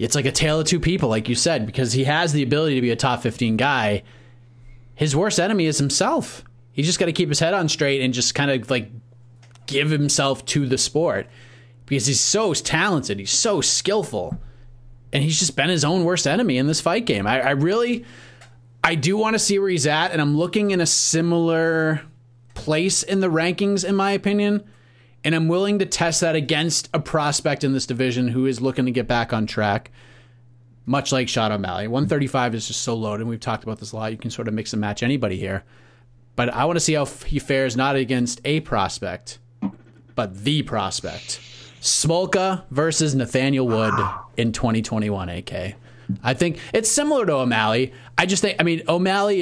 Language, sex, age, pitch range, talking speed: English, male, 30-49, 120-155 Hz, 200 wpm